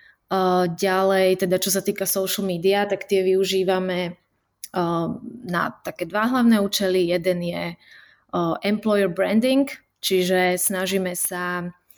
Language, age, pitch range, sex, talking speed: Slovak, 20-39, 180-195 Hz, female, 110 wpm